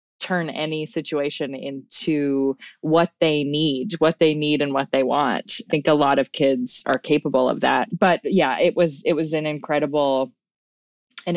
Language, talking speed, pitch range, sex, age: English, 175 wpm, 140-170 Hz, female, 20-39